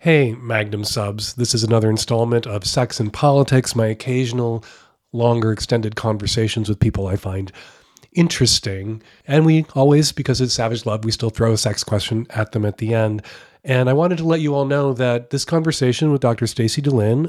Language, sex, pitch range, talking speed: English, male, 110-130 Hz, 185 wpm